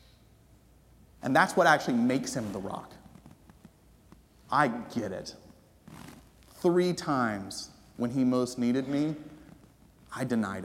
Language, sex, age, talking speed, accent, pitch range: English, male, 30-49, 115 wpm, American, 105-130 Hz